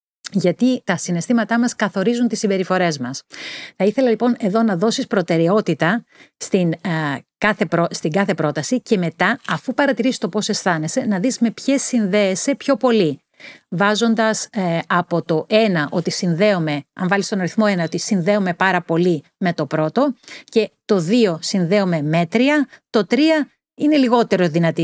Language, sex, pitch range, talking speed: Greek, female, 175-235 Hz, 155 wpm